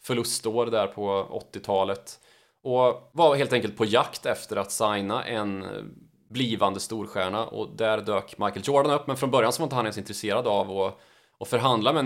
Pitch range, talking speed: 105-120 Hz, 180 wpm